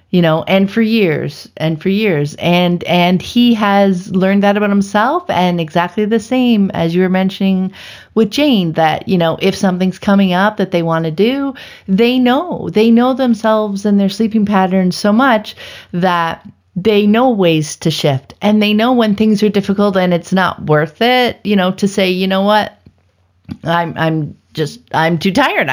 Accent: American